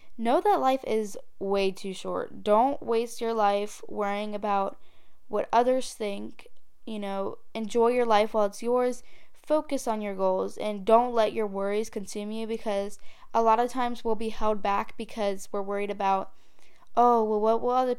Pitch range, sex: 205-240 Hz, female